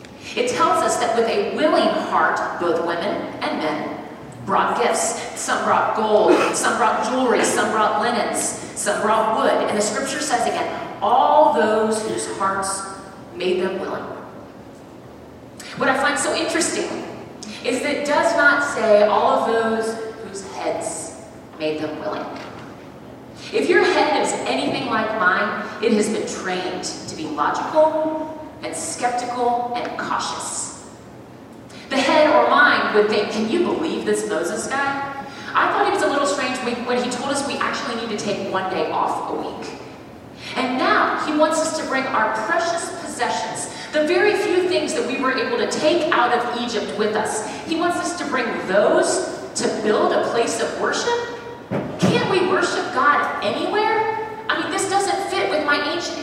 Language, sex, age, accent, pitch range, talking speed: English, female, 30-49, American, 220-330 Hz, 170 wpm